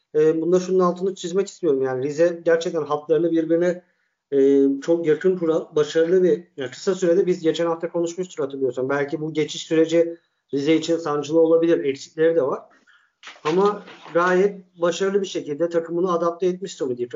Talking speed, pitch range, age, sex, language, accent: 155 wpm, 165-200 Hz, 50-69, male, Turkish, native